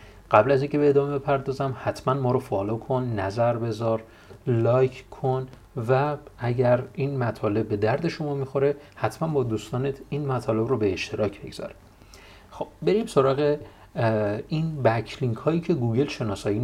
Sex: male